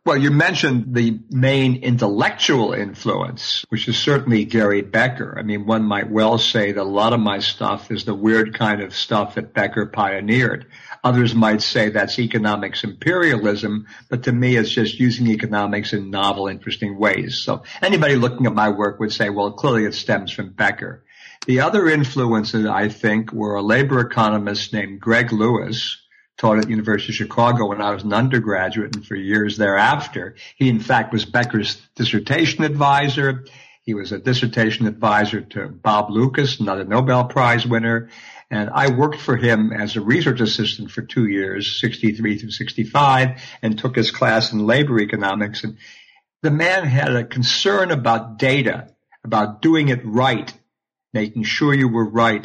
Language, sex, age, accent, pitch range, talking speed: English, male, 50-69, American, 105-125 Hz, 170 wpm